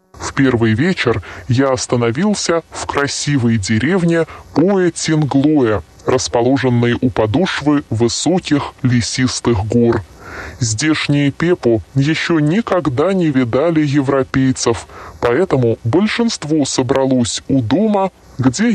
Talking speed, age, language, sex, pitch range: 90 wpm, 20-39, Russian, female, 120-160 Hz